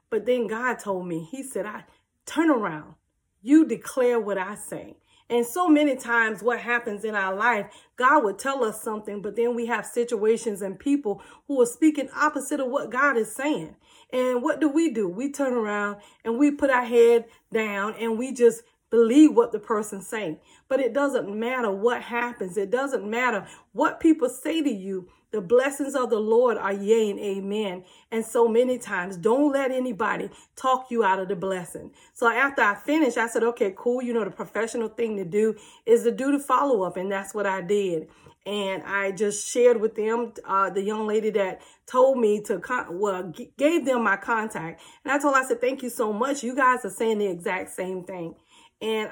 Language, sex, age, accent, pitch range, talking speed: English, female, 40-59, American, 205-255 Hz, 205 wpm